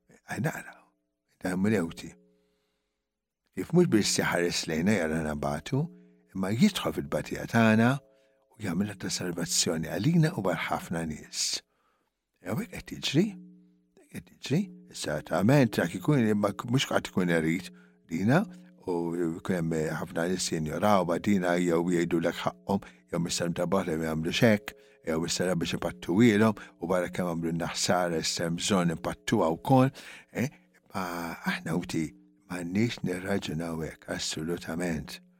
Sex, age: male, 60-79